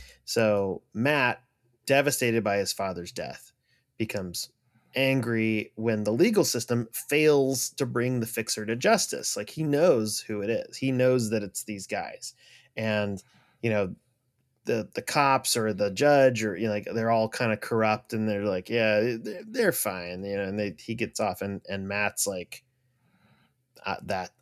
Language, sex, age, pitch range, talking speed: English, male, 30-49, 105-130 Hz, 170 wpm